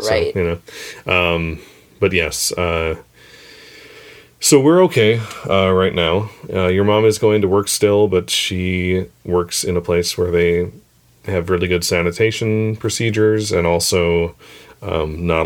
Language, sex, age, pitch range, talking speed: English, male, 30-49, 90-110 Hz, 150 wpm